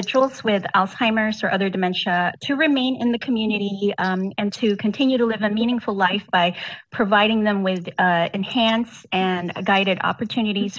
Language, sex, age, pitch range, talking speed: English, female, 30-49, 185-235 Hz, 155 wpm